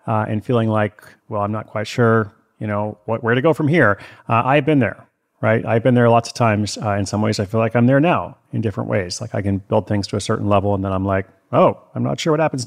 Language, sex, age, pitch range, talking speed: English, male, 30-49, 105-125 Hz, 280 wpm